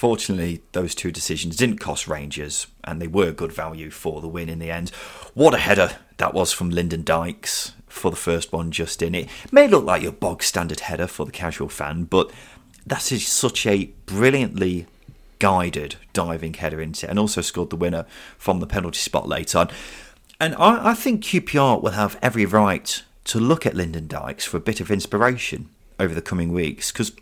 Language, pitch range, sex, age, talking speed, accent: English, 85-115 Hz, male, 30-49, 200 wpm, British